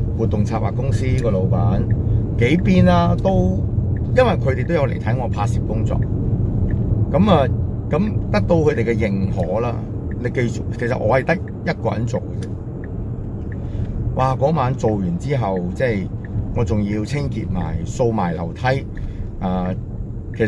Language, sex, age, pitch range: Chinese, male, 30-49, 100-120 Hz